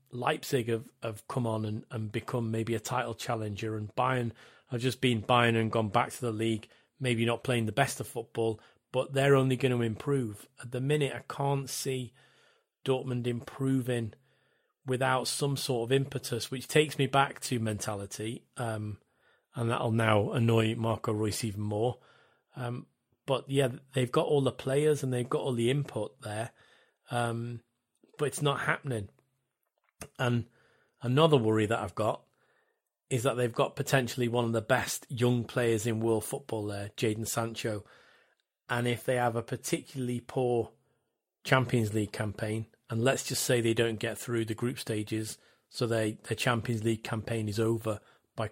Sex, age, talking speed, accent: male, 30-49, 170 wpm, British